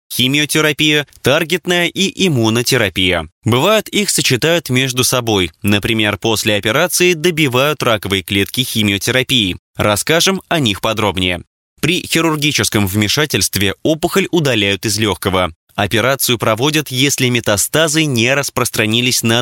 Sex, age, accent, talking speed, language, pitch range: male, 20-39, native, 105 wpm, Russian, 105-155 Hz